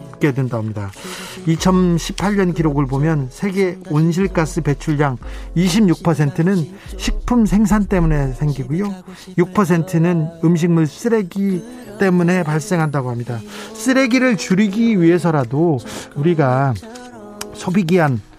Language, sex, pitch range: Korean, male, 145-185 Hz